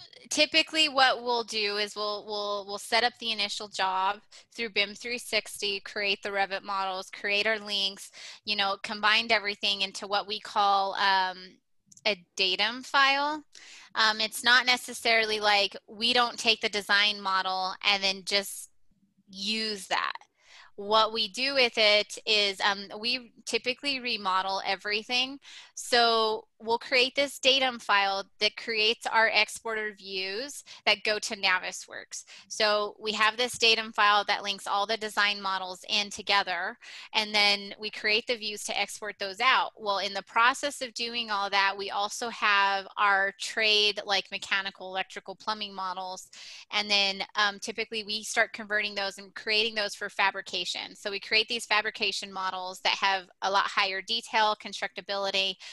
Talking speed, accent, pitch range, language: 155 wpm, American, 195-225 Hz, English